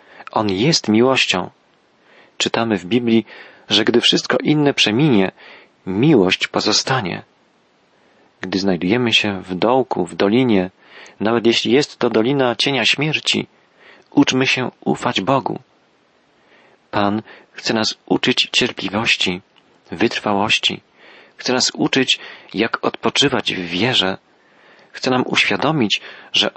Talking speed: 110 wpm